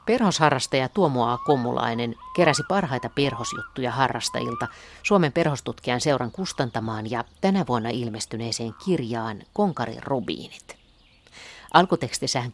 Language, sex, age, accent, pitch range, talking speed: Finnish, female, 50-69, native, 120-155 Hz, 95 wpm